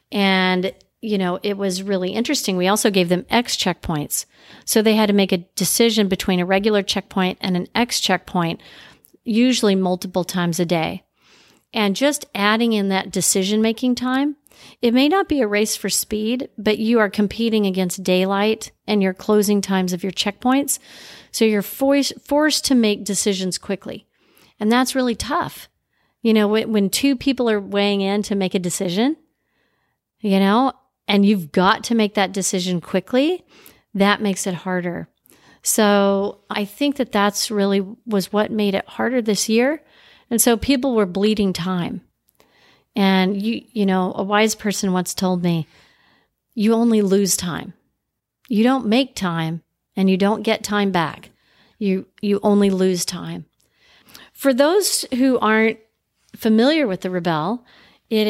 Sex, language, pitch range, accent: female, English, 190-235 Hz, American